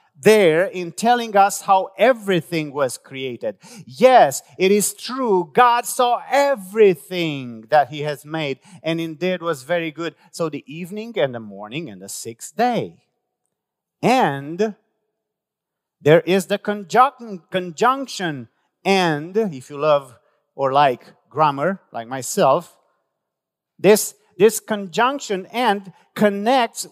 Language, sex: English, male